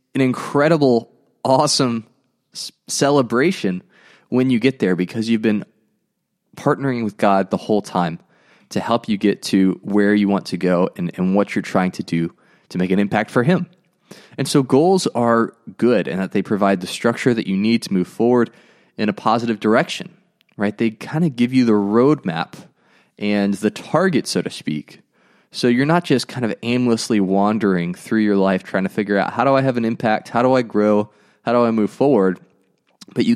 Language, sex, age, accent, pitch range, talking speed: English, male, 20-39, American, 100-135 Hz, 190 wpm